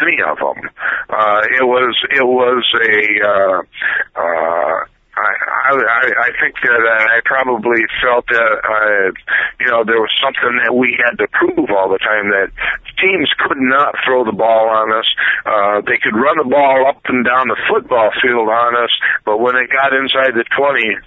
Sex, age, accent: male, 60-79, American